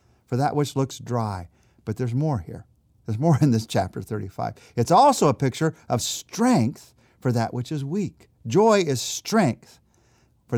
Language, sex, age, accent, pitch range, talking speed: English, male, 50-69, American, 110-145 Hz, 170 wpm